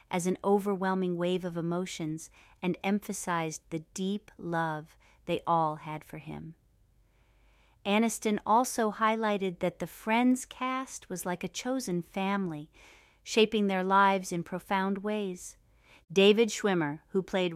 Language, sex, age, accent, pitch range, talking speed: English, female, 40-59, American, 170-200 Hz, 130 wpm